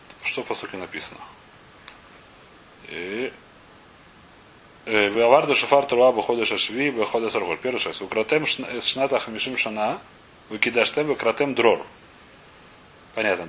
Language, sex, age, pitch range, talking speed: Russian, male, 30-49, 120-155 Hz, 95 wpm